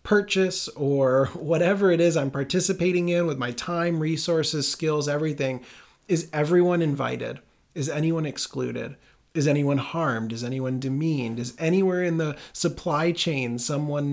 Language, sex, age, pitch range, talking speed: English, male, 30-49, 125-160 Hz, 140 wpm